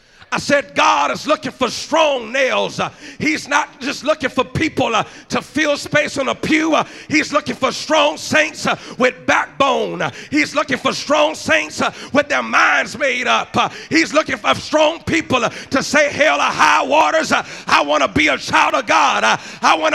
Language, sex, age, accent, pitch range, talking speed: English, male, 40-59, American, 250-305 Hz, 210 wpm